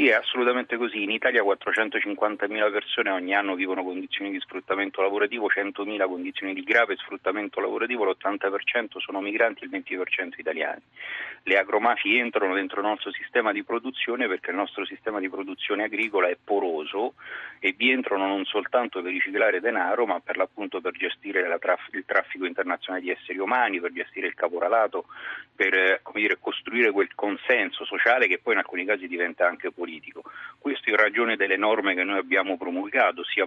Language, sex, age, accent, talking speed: Italian, male, 40-59, native, 165 wpm